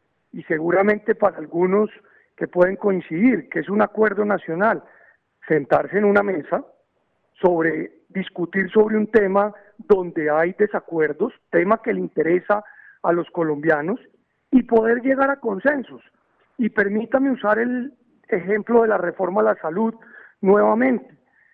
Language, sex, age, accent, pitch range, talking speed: English, male, 40-59, Colombian, 180-225 Hz, 135 wpm